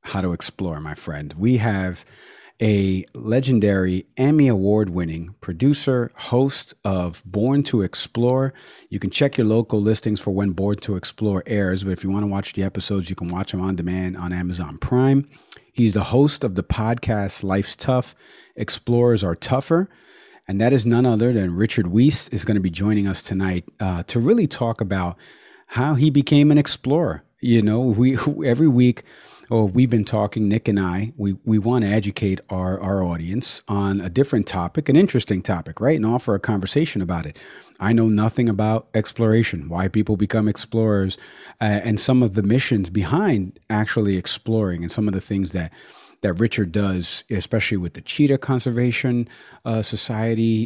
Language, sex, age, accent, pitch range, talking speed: English, male, 40-59, American, 95-125 Hz, 180 wpm